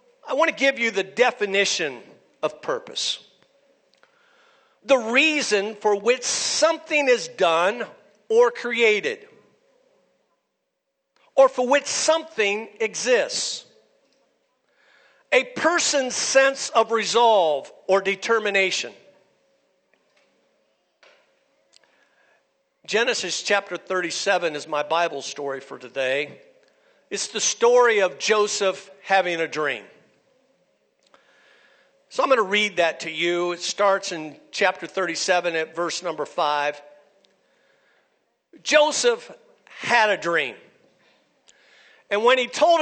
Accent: American